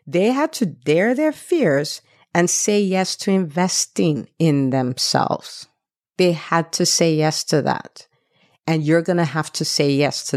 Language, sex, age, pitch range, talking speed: English, female, 50-69, 155-210 Hz, 170 wpm